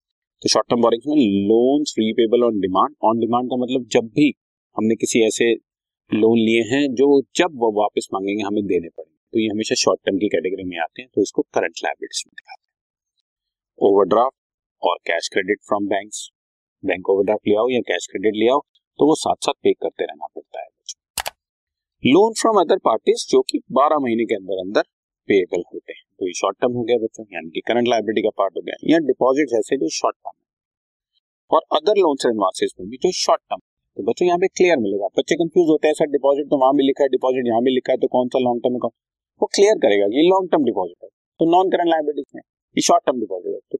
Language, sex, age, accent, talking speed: Hindi, male, 30-49, native, 145 wpm